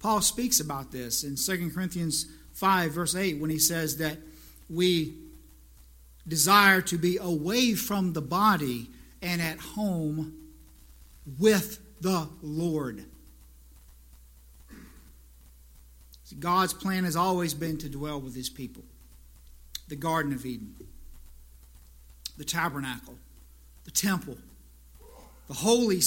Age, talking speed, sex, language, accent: 50-69, 110 wpm, male, English, American